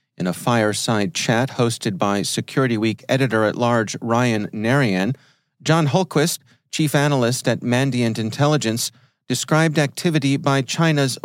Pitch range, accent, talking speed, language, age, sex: 115-145 Hz, American, 115 wpm, English, 40-59, male